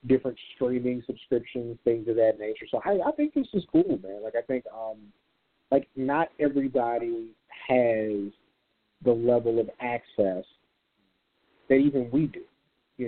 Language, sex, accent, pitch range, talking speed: English, male, American, 115-155 Hz, 145 wpm